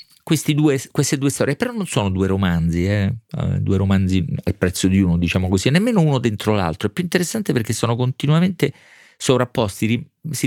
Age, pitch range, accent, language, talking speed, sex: 40-59, 90-130 Hz, native, Italian, 195 wpm, male